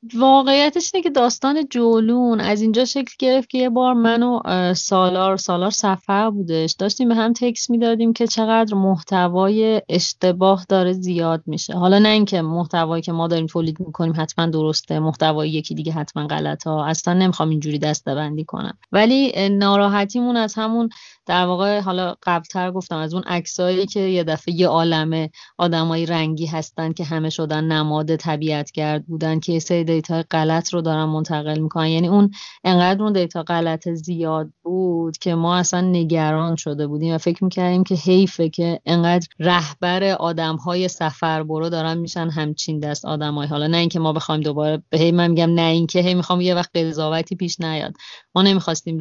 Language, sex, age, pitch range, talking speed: Persian, female, 30-49, 160-195 Hz, 170 wpm